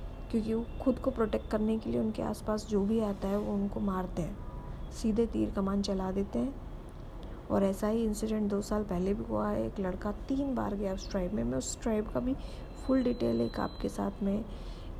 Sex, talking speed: female, 210 wpm